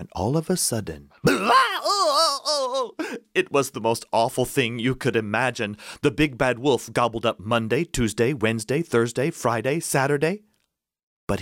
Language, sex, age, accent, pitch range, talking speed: English, male, 30-49, American, 110-175 Hz, 140 wpm